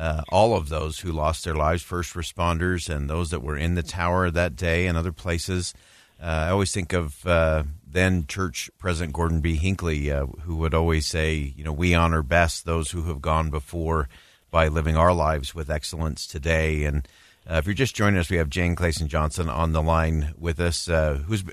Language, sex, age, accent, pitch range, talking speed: English, male, 40-59, American, 80-90 Hz, 205 wpm